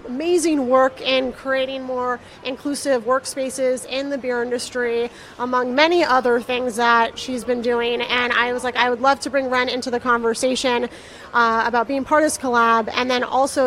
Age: 30-49